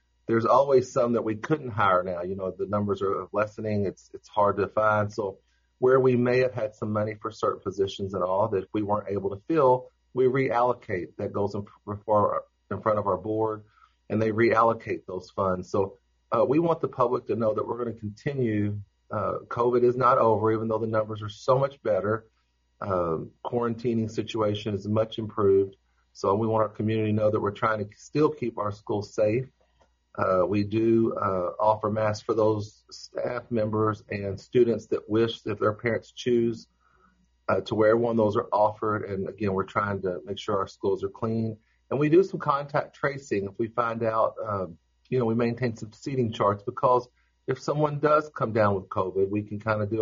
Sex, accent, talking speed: male, American, 205 wpm